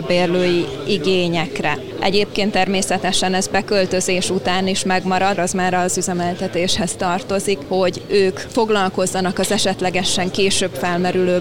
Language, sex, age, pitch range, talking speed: Hungarian, female, 20-39, 185-210 Hz, 110 wpm